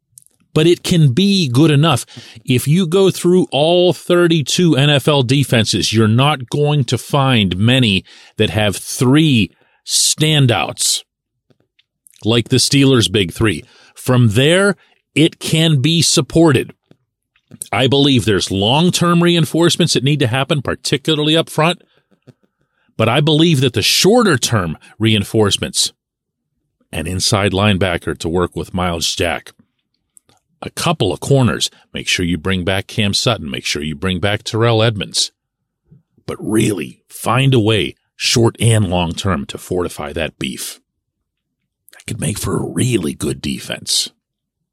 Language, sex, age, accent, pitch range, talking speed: English, male, 40-59, American, 105-155 Hz, 135 wpm